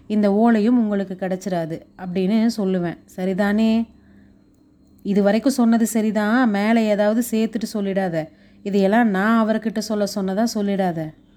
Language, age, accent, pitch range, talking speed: Tamil, 30-49, native, 195-230 Hz, 110 wpm